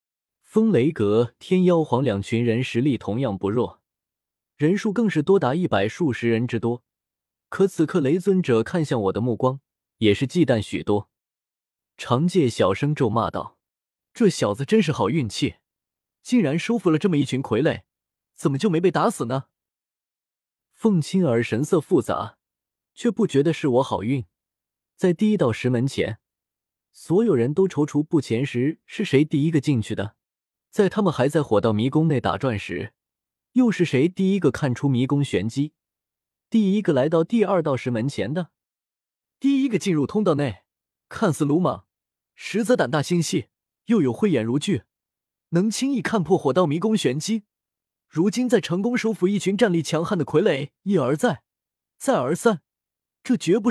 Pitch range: 120-190 Hz